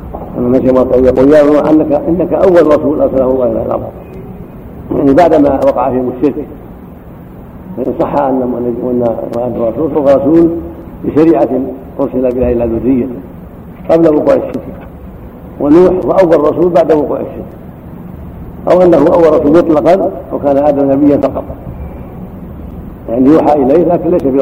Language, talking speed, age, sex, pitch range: Arabic, 135 wpm, 60-79, male, 120-150 Hz